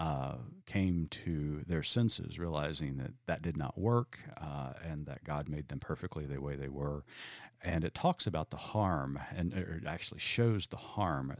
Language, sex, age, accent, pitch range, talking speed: English, male, 40-59, American, 75-105 Hz, 180 wpm